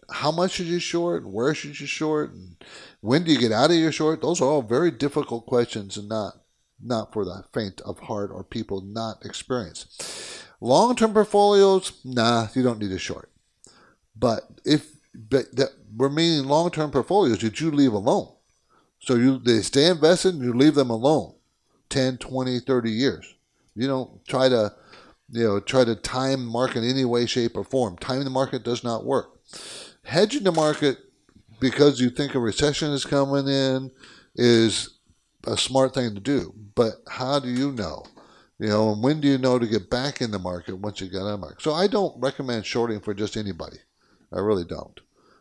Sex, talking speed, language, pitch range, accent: male, 190 wpm, English, 110-145 Hz, American